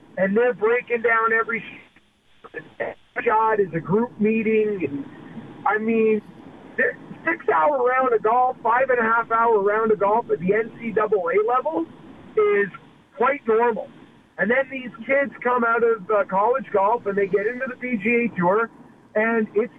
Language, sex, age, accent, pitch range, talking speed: English, male, 50-69, American, 205-250 Hz, 135 wpm